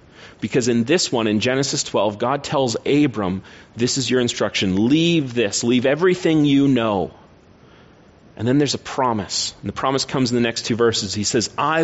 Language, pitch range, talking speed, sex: English, 115-140 Hz, 190 wpm, male